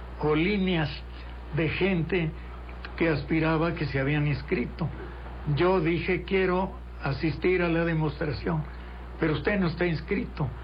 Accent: Mexican